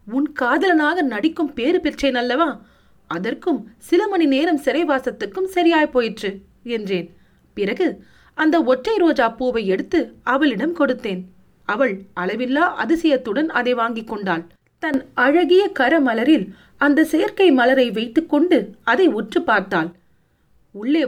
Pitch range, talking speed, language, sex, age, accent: 210-320 Hz, 110 wpm, Tamil, female, 30-49, native